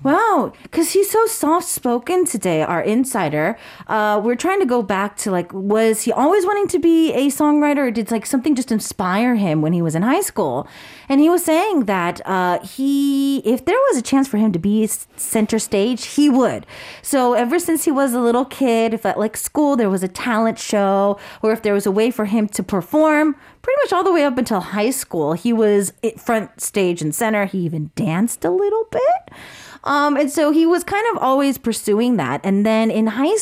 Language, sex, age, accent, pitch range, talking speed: English, female, 30-49, American, 190-290 Hz, 215 wpm